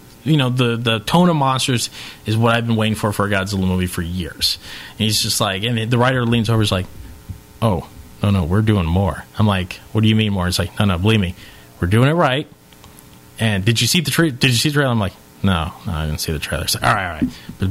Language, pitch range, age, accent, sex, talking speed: English, 95-125 Hz, 30-49, American, male, 270 wpm